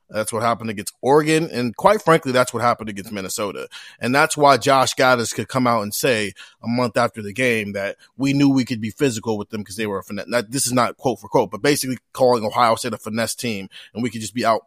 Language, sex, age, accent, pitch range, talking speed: English, male, 30-49, American, 115-140 Hz, 255 wpm